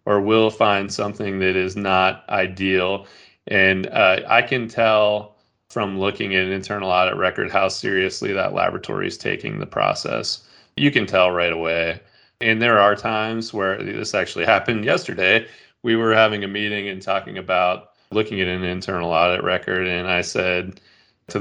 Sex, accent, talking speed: male, American, 170 wpm